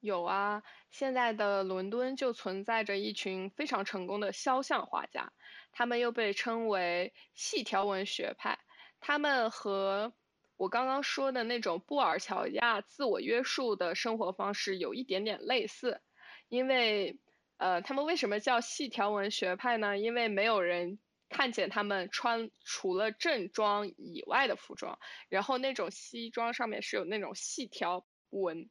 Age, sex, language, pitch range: 20-39, female, Chinese, 195-270 Hz